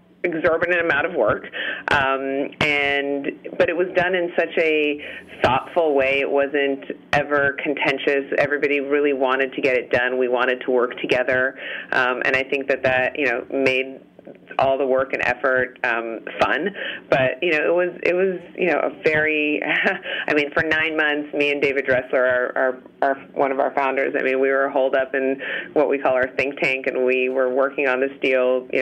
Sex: female